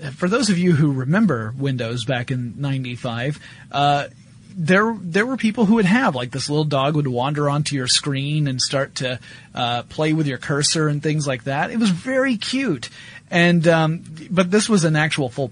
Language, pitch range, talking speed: English, 135-165 Hz, 195 wpm